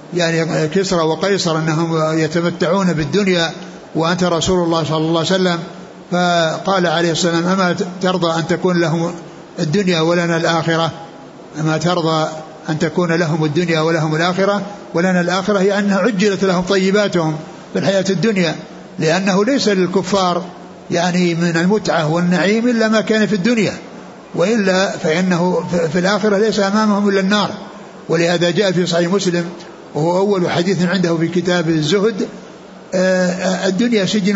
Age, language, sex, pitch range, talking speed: 60-79, Arabic, male, 170-205 Hz, 135 wpm